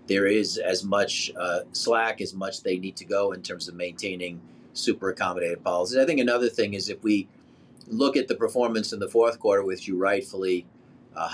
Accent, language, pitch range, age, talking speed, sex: American, English, 90-110 Hz, 40-59, 200 wpm, male